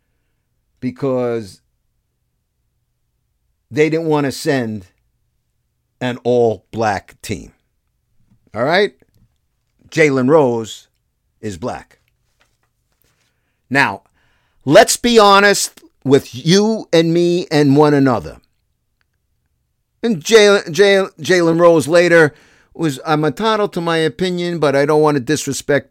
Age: 50-69